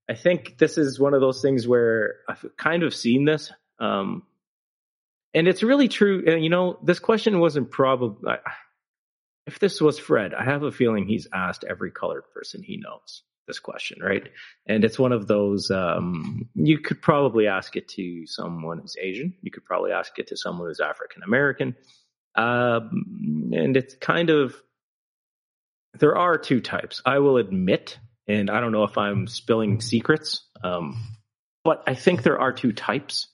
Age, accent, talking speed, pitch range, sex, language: 30-49, American, 170 wpm, 110-155 Hz, male, English